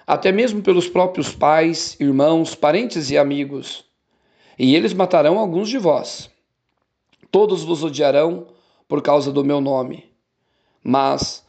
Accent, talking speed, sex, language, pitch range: Brazilian, 125 wpm, male, Portuguese, 135-170 Hz